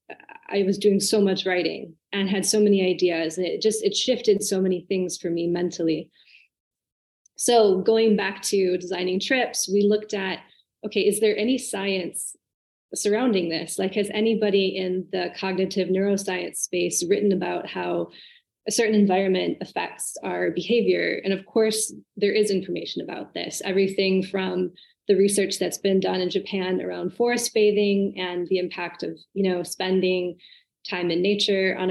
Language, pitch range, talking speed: English, 180-205 Hz, 160 wpm